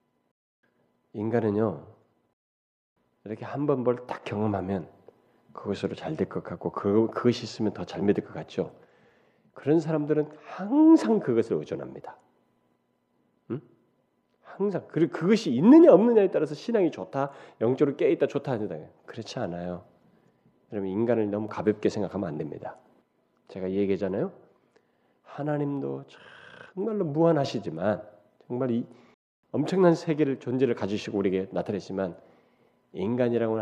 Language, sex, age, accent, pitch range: Korean, male, 40-59, native, 105-160 Hz